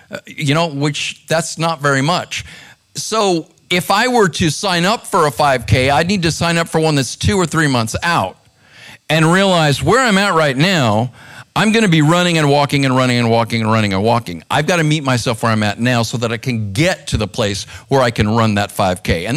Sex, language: male, English